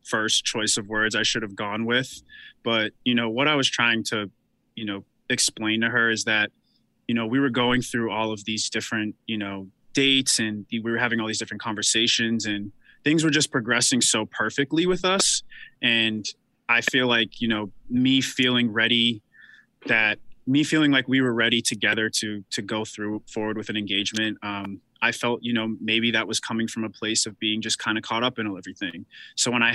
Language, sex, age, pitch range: English, male, 20-39, 110-120 Hz